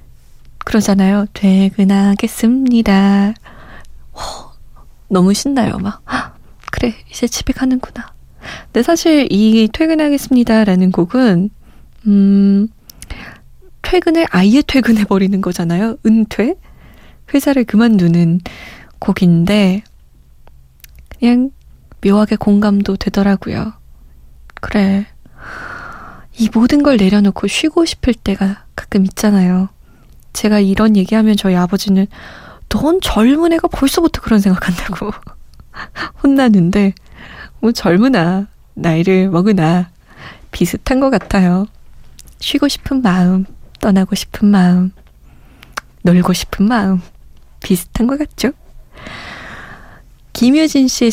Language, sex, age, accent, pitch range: Korean, female, 20-39, native, 190-240 Hz